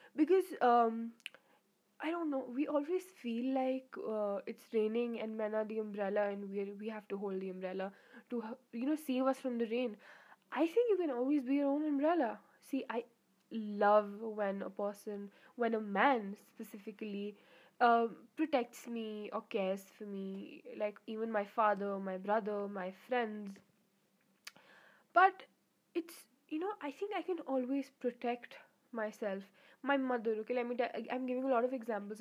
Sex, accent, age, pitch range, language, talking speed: female, Indian, 10-29, 210-265 Hz, English, 170 wpm